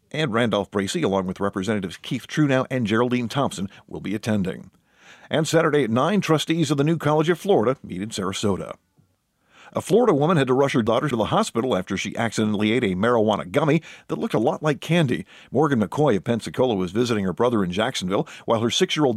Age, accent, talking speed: 50-69, American, 205 wpm